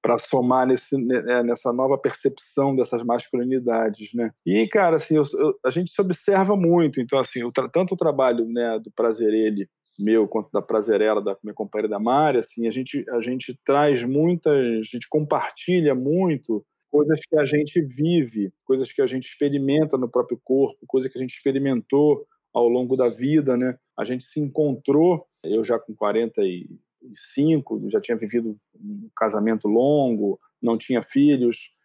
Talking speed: 175 wpm